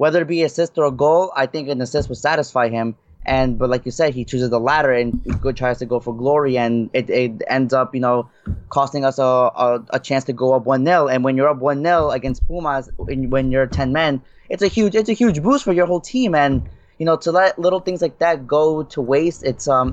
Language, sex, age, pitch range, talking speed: English, male, 20-39, 125-145 Hz, 255 wpm